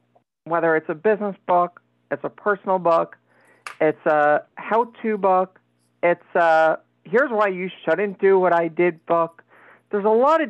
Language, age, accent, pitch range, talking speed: English, 50-69, American, 165-200 Hz, 160 wpm